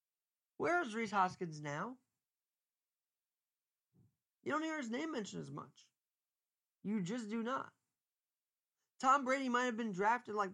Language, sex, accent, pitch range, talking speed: English, male, American, 190-230 Hz, 135 wpm